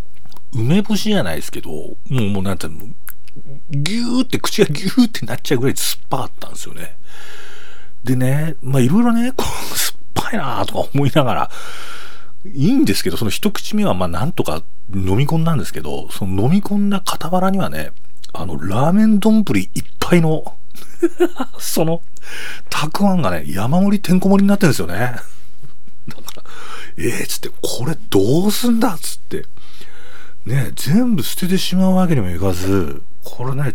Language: Japanese